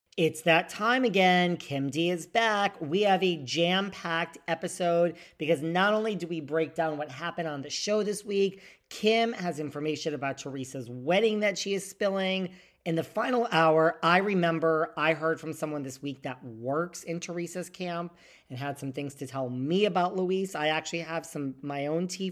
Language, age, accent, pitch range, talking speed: English, 40-59, American, 140-185 Hz, 190 wpm